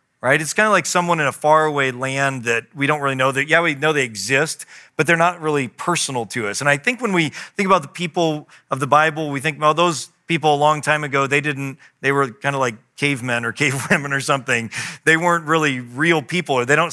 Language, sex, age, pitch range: English, male, 40-59, 125-160 Hz